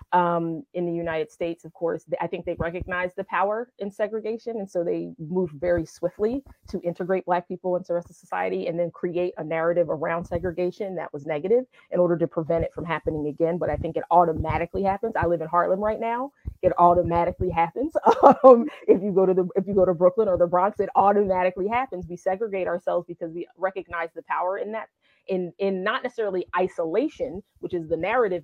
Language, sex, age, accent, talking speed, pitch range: English, female, 30-49, American, 210 wpm, 165-210 Hz